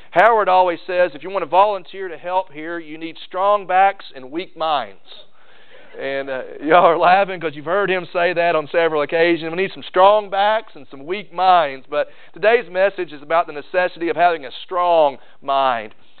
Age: 40-59